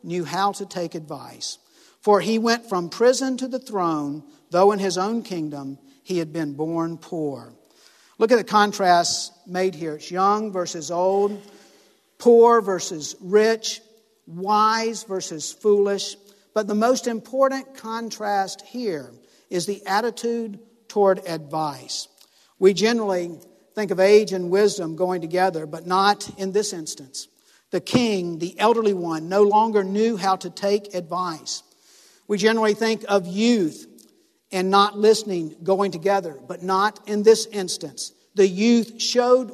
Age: 50-69